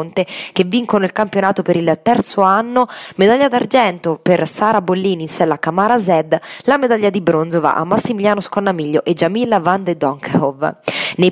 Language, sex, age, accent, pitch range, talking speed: Italian, female, 20-39, native, 185-230 Hz, 165 wpm